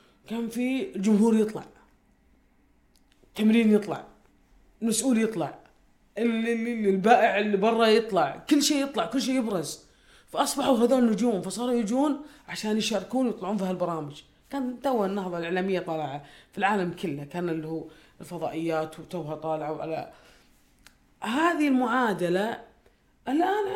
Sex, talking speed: female, 115 wpm